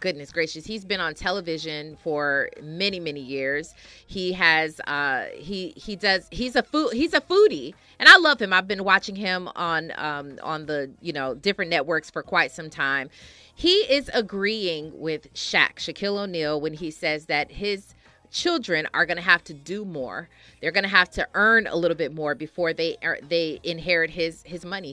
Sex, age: female, 30-49